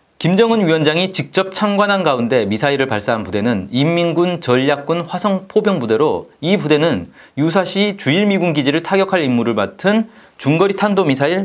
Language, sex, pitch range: Korean, male, 140-205 Hz